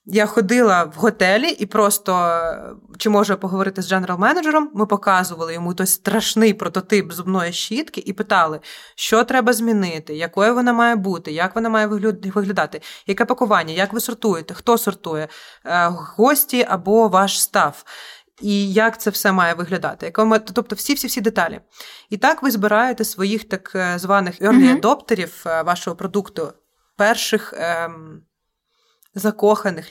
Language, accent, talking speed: Ukrainian, native, 130 wpm